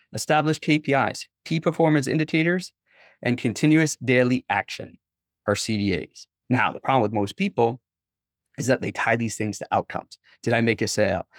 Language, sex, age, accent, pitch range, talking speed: English, male, 30-49, American, 115-155 Hz, 160 wpm